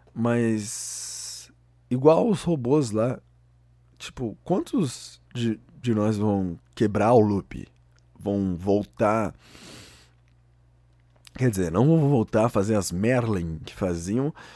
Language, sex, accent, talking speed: Portuguese, male, Brazilian, 110 wpm